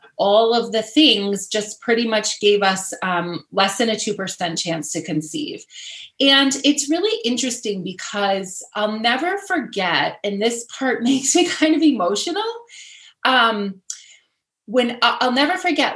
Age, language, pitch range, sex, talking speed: 30-49, English, 195-275 Hz, female, 150 wpm